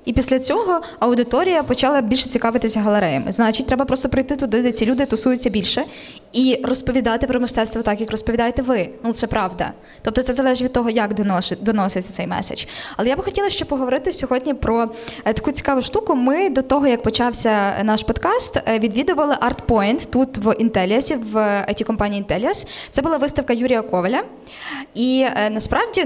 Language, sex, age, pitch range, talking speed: Ukrainian, female, 10-29, 215-270 Hz, 165 wpm